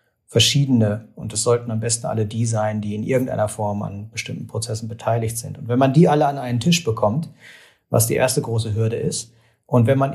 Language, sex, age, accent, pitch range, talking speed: German, male, 40-59, German, 115-140 Hz, 215 wpm